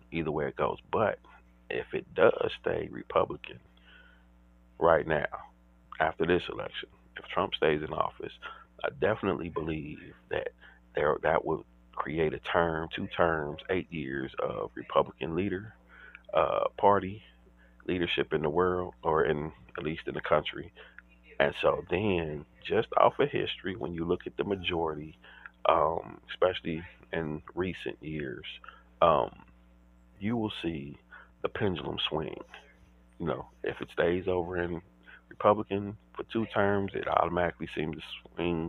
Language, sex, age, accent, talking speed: English, male, 40-59, American, 140 wpm